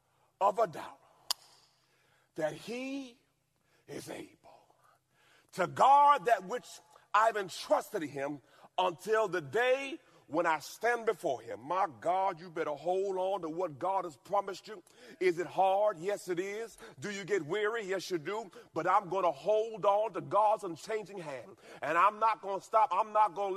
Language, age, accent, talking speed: English, 40-59, American, 170 wpm